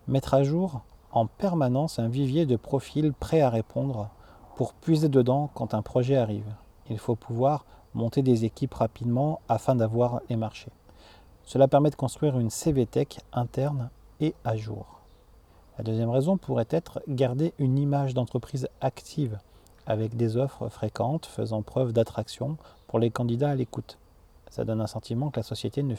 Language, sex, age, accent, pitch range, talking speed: French, male, 40-59, French, 110-135 Hz, 160 wpm